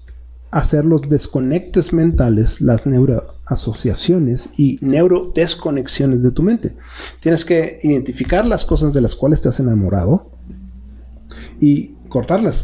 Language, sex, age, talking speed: Spanish, male, 40-59, 115 wpm